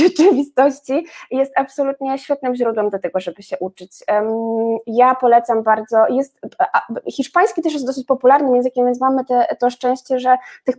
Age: 20-39